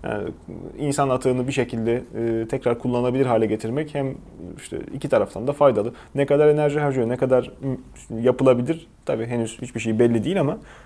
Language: Turkish